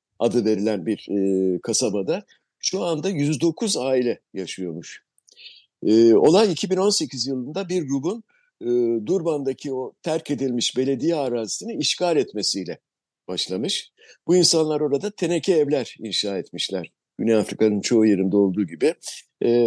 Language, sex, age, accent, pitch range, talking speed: Turkish, male, 60-79, native, 115-165 Hz, 120 wpm